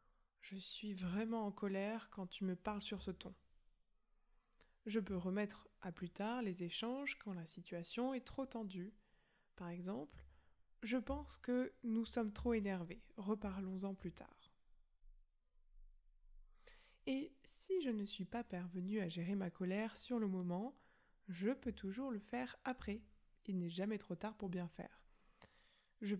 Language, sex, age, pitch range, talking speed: French, female, 20-39, 185-225 Hz, 155 wpm